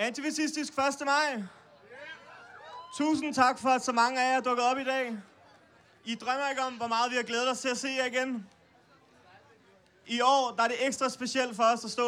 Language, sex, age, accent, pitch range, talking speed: Danish, male, 30-49, native, 215-255 Hz, 210 wpm